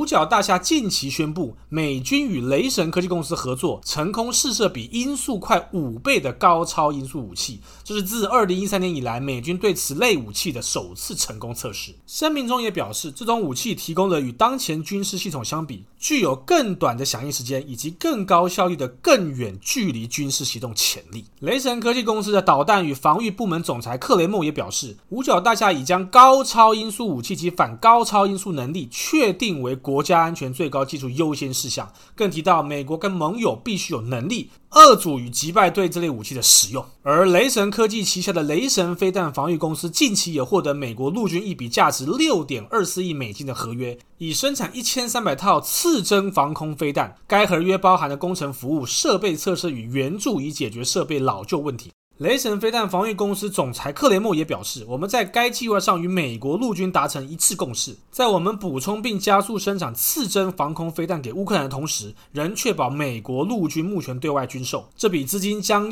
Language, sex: Chinese, male